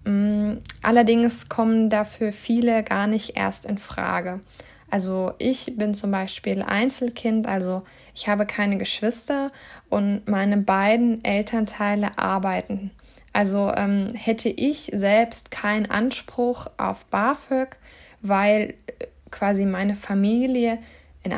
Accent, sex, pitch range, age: German, female, 200-230 Hz, 20-39